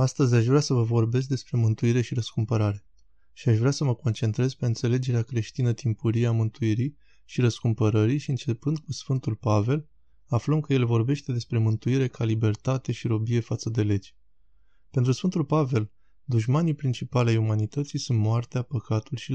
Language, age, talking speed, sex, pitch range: Romanian, 20-39, 165 wpm, male, 115-130 Hz